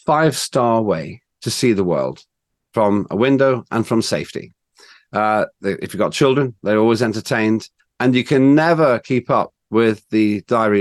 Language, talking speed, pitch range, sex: English, 160 wpm, 115-165 Hz, male